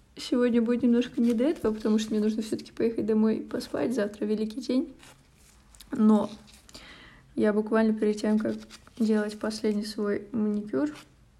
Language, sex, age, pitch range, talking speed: Russian, female, 20-39, 215-235 Hz, 140 wpm